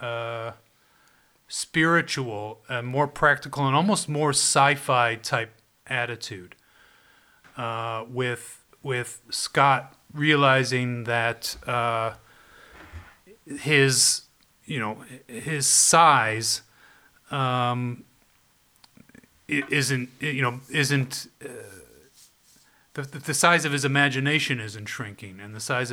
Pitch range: 120-150 Hz